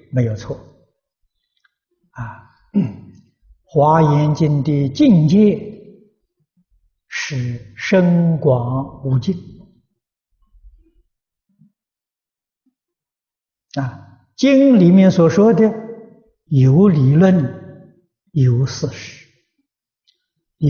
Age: 60-79